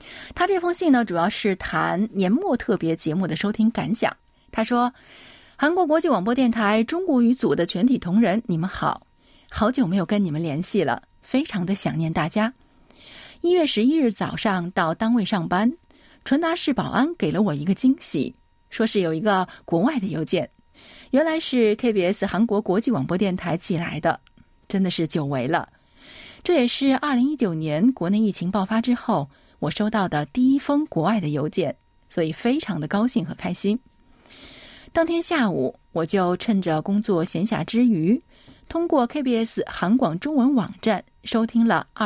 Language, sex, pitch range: Chinese, female, 175-240 Hz